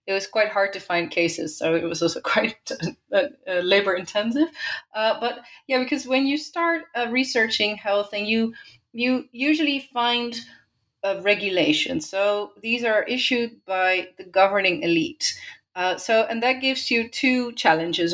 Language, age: English, 30-49